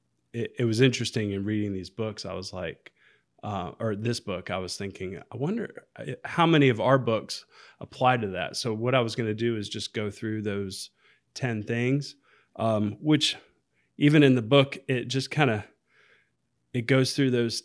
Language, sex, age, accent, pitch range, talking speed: English, male, 20-39, American, 100-120 Hz, 185 wpm